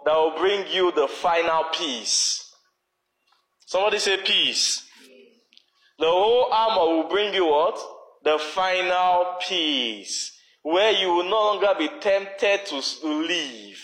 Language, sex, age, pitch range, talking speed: English, male, 20-39, 140-220 Hz, 125 wpm